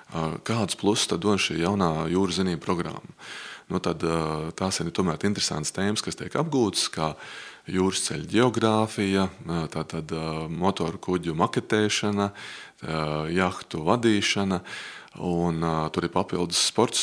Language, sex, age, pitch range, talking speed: English, male, 20-39, 85-100 Hz, 115 wpm